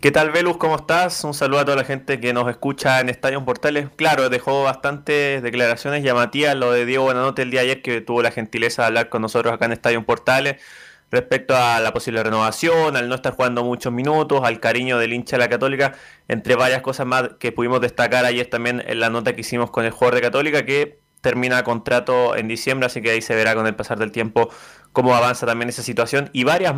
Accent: Argentinian